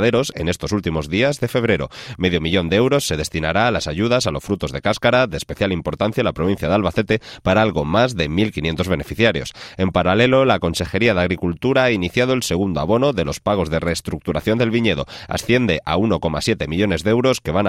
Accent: Spanish